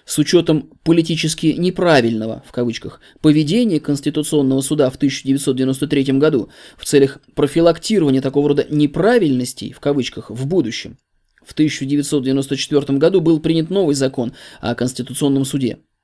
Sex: male